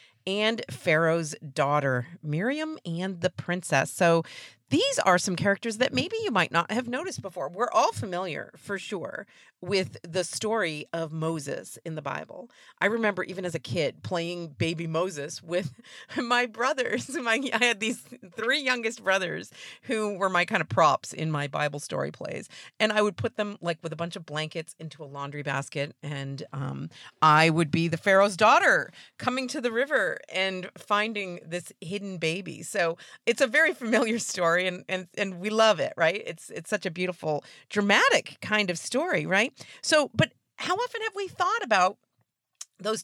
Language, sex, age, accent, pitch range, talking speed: English, female, 40-59, American, 165-245 Hz, 175 wpm